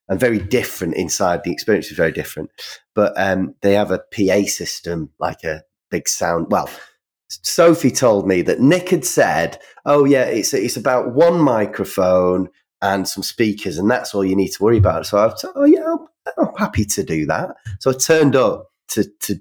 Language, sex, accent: English, male, British